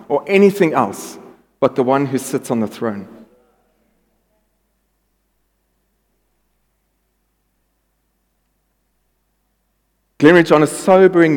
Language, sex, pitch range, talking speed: English, male, 130-170 Hz, 80 wpm